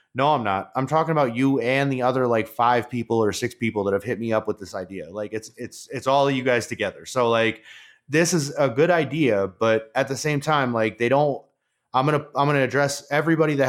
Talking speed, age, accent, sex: 245 wpm, 30-49, American, male